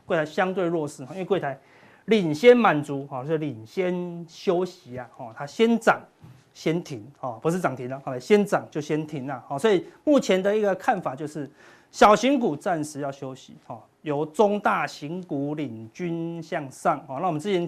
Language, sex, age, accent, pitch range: Chinese, male, 30-49, native, 145-200 Hz